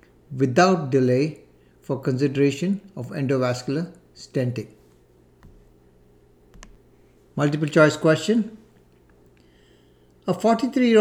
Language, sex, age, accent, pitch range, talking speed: English, male, 60-79, Indian, 115-155 Hz, 70 wpm